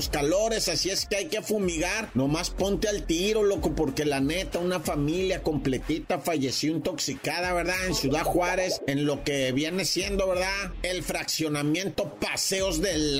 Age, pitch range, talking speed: 40-59, 160-215 Hz, 155 wpm